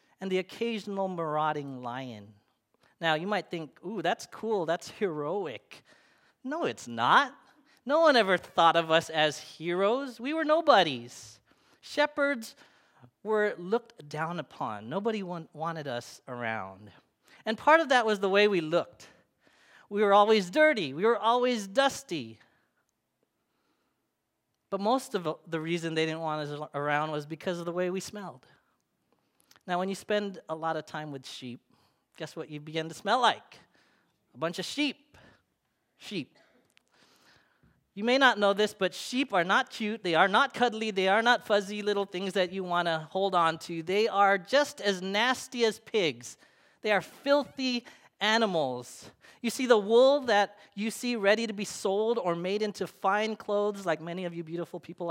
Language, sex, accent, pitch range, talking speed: English, male, American, 160-225 Hz, 165 wpm